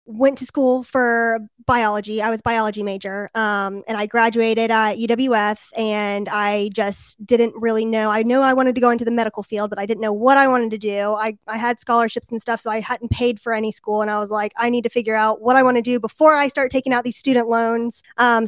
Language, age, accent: English, 20-39, American